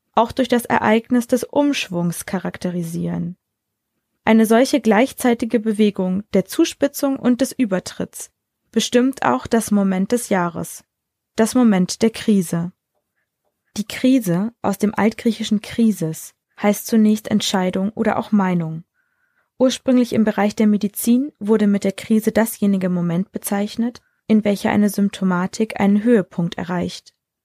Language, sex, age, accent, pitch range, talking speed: German, female, 20-39, German, 190-230 Hz, 125 wpm